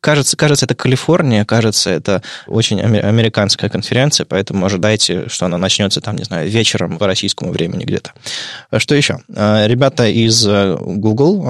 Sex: male